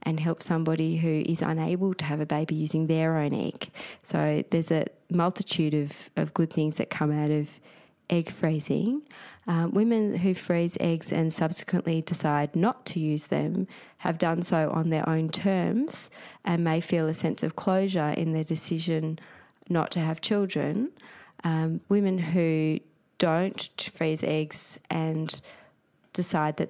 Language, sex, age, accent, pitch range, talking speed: English, female, 20-39, Australian, 155-175 Hz, 155 wpm